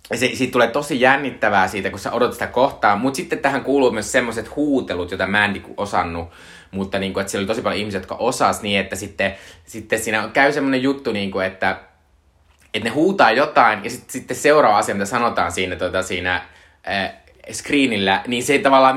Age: 20-39